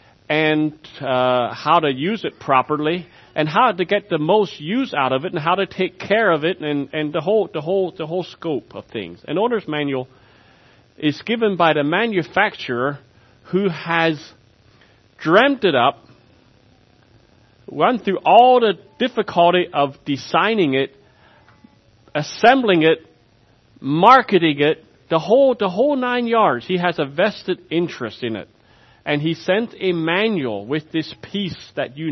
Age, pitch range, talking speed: 40-59, 120-175 Hz, 155 wpm